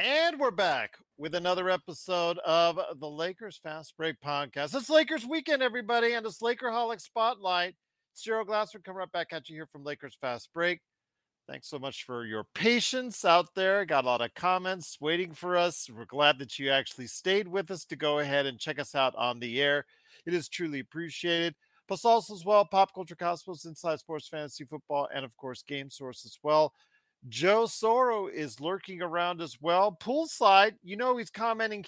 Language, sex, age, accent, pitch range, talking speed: English, male, 40-59, American, 145-215 Hz, 190 wpm